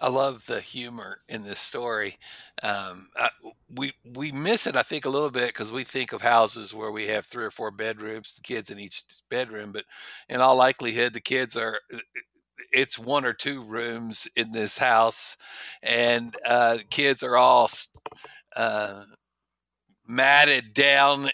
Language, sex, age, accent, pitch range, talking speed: English, male, 60-79, American, 120-165 Hz, 165 wpm